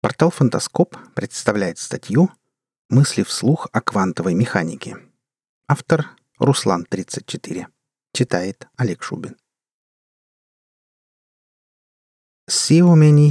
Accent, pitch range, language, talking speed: native, 105-135 Hz, Russian, 70 wpm